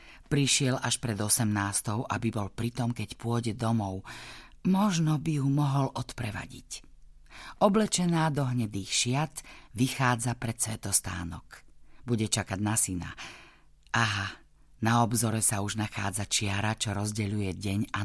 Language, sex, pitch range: Slovak, female, 105-145 Hz